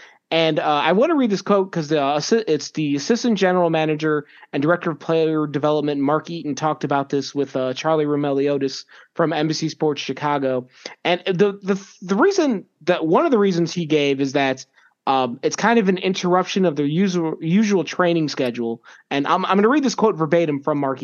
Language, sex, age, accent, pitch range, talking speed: English, male, 30-49, American, 145-185 Hz, 200 wpm